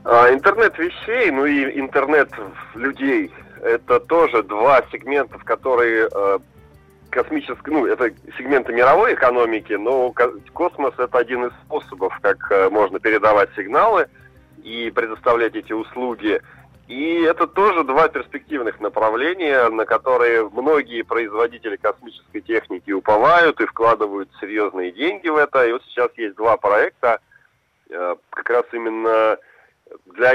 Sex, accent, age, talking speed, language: male, native, 30-49, 120 wpm, Russian